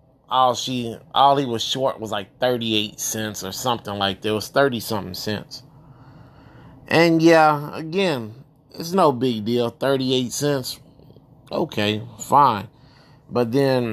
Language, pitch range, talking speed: English, 110-140 Hz, 130 wpm